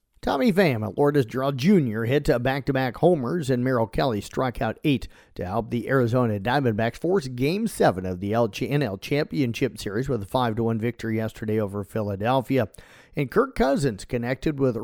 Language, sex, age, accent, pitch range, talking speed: English, male, 50-69, American, 115-145 Hz, 160 wpm